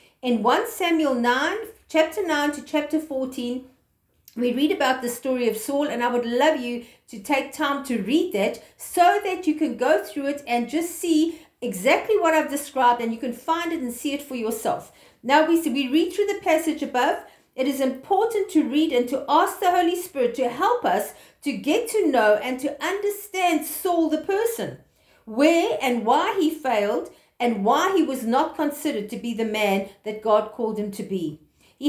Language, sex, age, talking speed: English, female, 50-69, 195 wpm